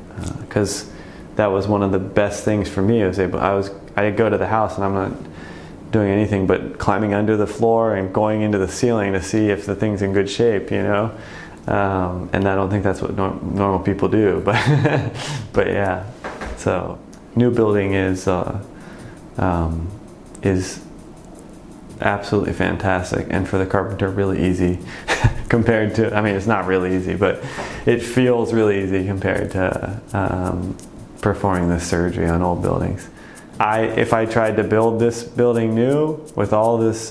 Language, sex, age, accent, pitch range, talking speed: English, male, 30-49, American, 95-110 Hz, 175 wpm